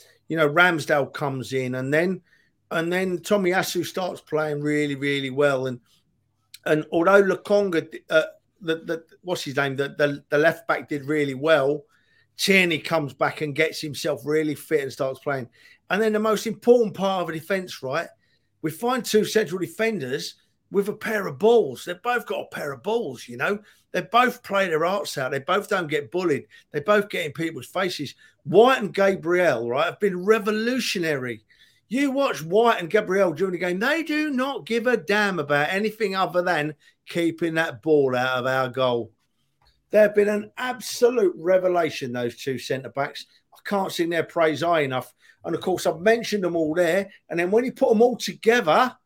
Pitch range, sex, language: 150-210 Hz, male, English